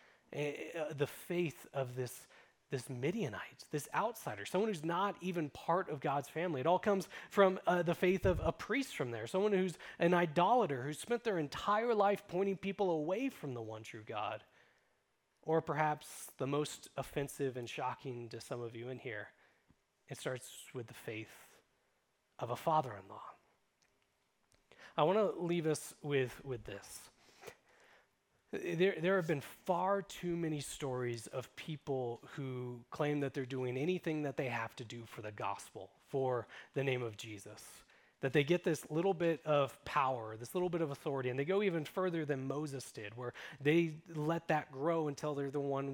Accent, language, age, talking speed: American, English, 30-49, 175 wpm